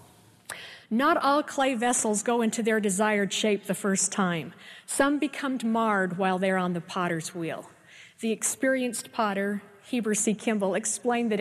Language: English